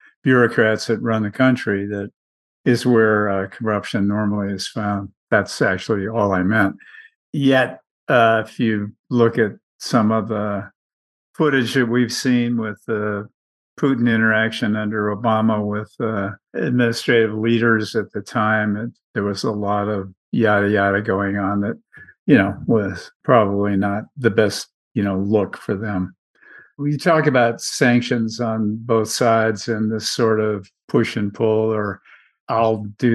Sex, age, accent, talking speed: male, 50-69, American, 150 wpm